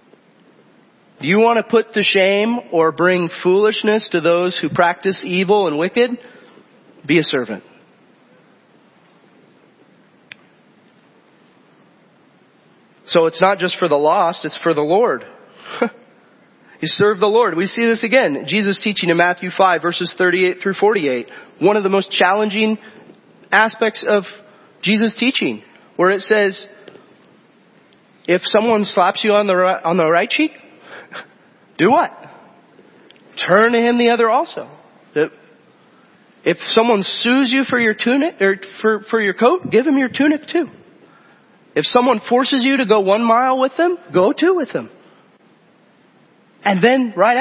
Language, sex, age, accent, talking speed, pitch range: English, male, 30-49, American, 140 wpm, 180-240 Hz